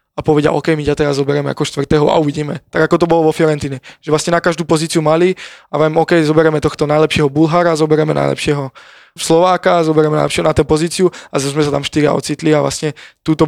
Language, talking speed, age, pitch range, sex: Slovak, 215 wpm, 20-39, 145-155 Hz, male